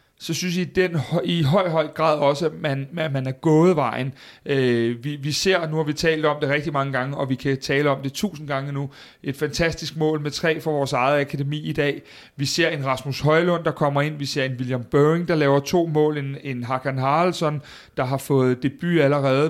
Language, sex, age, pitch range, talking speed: Danish, male, 30-49, 140-165 Hz, 230 wpm